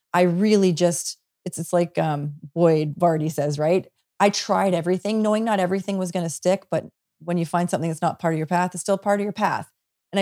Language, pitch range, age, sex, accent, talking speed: English, 160-195 Hz, 30-49, female, American, 230 wpm